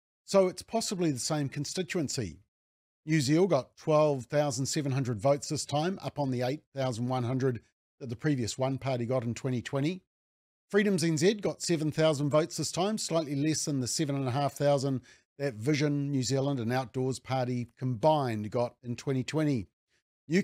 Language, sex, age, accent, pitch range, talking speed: English, male, 50-69, Australian, 115-150 Hz, 145 wpm